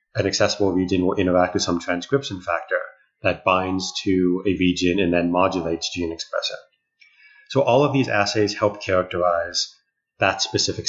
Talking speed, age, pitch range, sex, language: 155 wpm, 30-49, 90-110 Hz, male, English